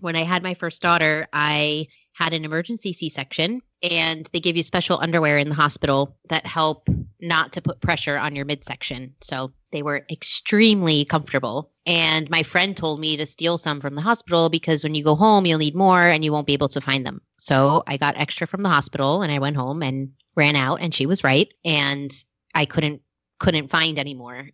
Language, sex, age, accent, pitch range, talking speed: English, female, 20-39, American, 145-175 Hz, 210 wpm